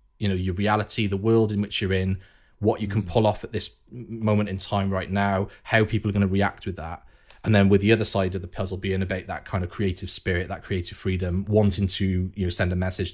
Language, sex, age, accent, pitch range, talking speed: English, male, 30-49, British, 100-115 Hz, 255 wpm